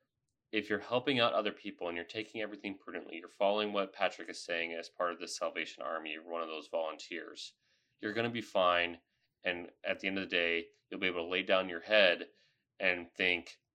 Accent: American